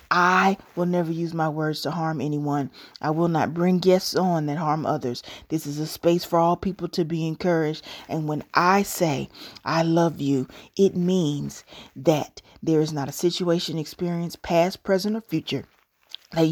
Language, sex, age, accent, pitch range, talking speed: English, female, 30-49, American, 150-180 Hz, 180 wpm